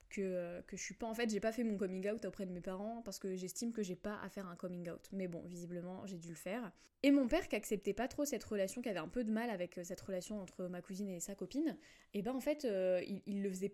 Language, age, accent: French, 10-29, French